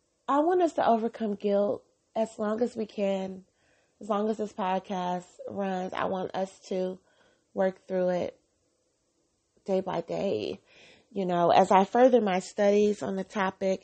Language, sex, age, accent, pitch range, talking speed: English, female, 30-49, American, 195-240 Hz, 160 wpm